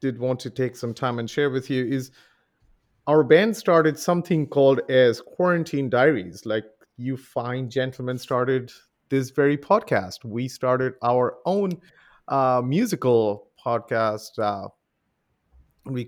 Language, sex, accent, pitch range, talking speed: English, male, Indian, 115-140 Hz, 135 wpm